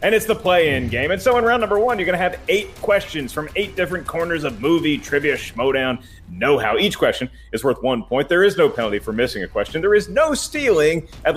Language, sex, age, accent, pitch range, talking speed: English, male, 30-49, American, 115-165 Hz, 235 wpm